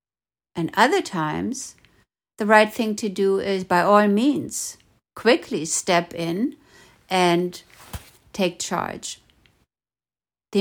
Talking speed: 105 wpm